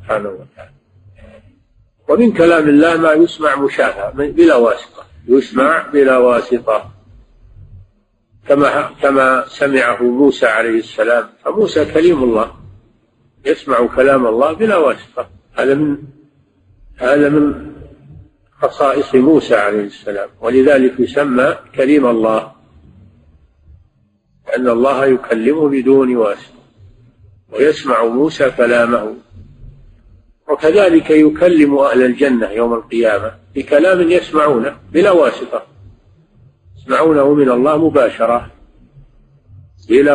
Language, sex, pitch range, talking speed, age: Arabic, male, 110-140 Hz, 90 wpm, 50-69